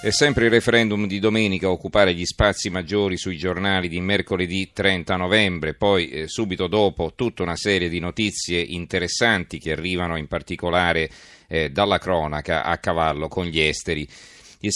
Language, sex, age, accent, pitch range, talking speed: Italian, male, 40-59, native, 85-105 Hz, 165 wpm